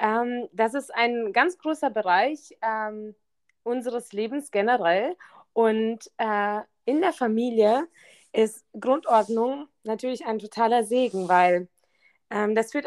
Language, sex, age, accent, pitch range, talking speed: German, female, 20-39, German, 190-245 Hz, 120 wpm